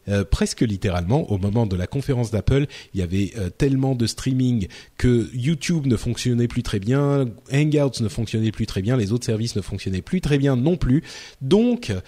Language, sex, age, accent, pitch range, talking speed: French, male, 30-49, French, 110-140 Hz, 200 wpm